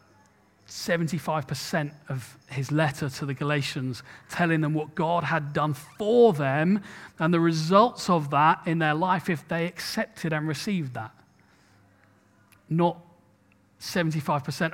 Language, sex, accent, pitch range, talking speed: English, male, British, 130-170 Hz, 120 wpm